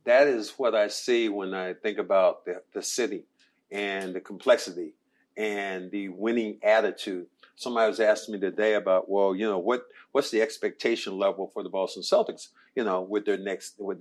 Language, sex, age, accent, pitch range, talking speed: English, male, 50-69, American, 105-125 Hz, 185 wpm